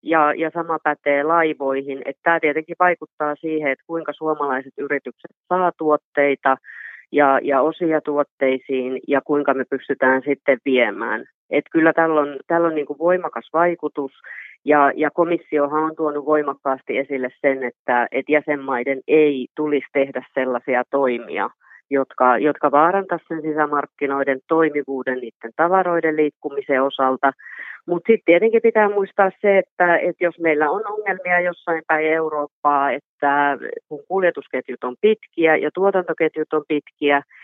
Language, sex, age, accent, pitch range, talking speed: Finnish, female, 30-49, native, 140-170 Hz, 135 wpm